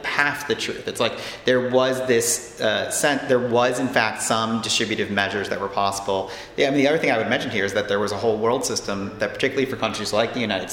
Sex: male